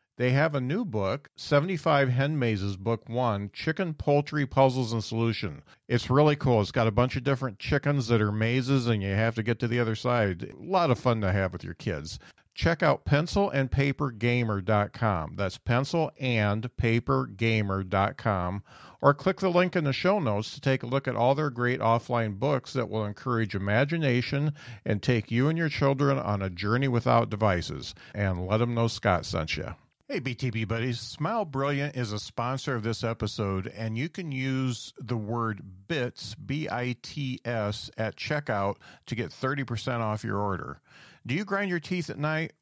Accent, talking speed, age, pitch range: American, 180 wpm, 50-69, 110-140 Hz